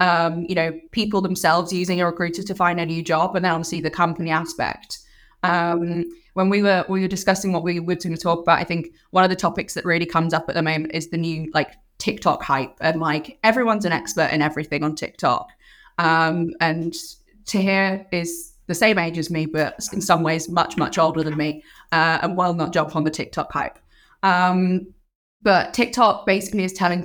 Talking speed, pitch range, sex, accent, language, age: 210 wpm, 160-185 Hz, female, British, English, 20-39